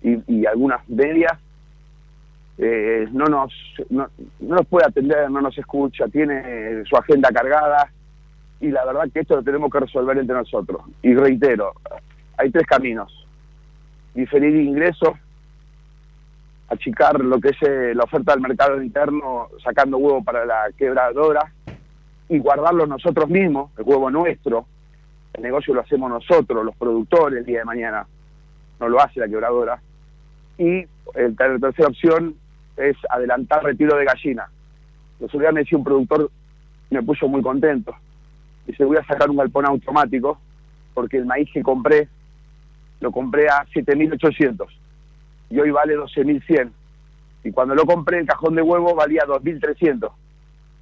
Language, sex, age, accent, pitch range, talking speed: Spanish, male, 40-59, Argentinian, 135-150 Hz, 145 wpm